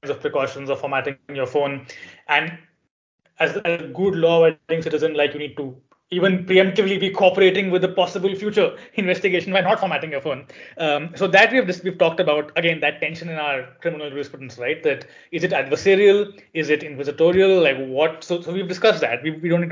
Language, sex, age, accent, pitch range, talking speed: English, male, 20-39, Indian, 145-195 Hz, 200 wpm